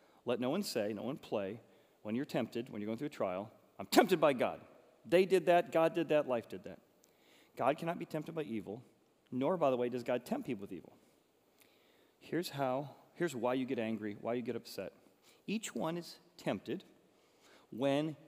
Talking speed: 200 wpm